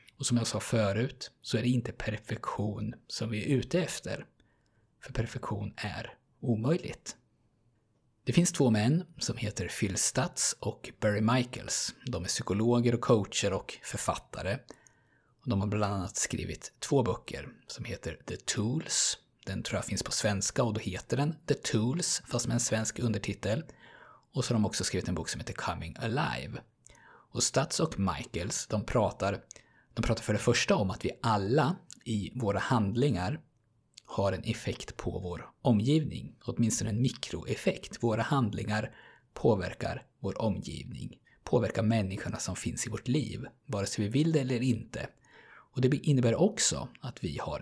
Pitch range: 105-130 Hz